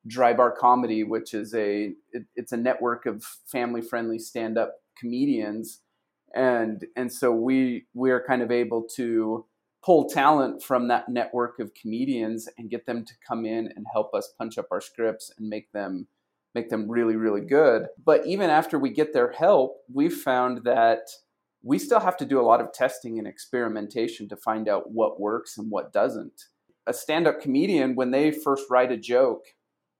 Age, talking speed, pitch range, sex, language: 30-49, 180 wpm, 115-140 Hz, male, English